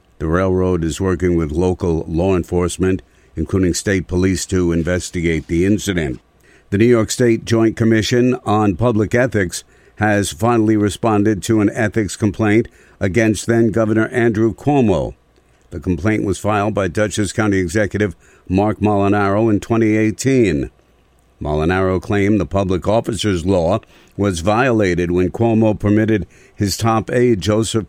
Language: English